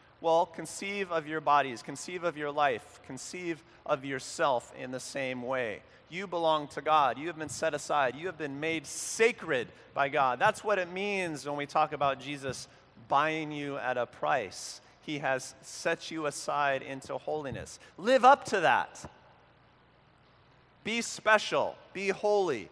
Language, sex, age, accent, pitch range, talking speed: English, male, 30-49, American, 125-160 Hz, 160 wpm